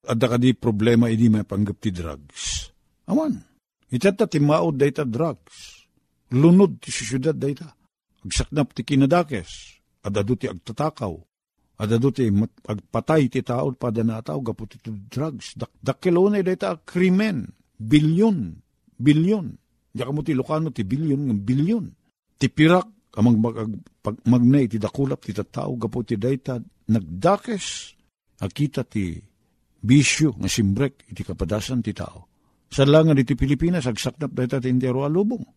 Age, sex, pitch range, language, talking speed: 50-69, male, 115-160 Hz, Filipino, 130 wpm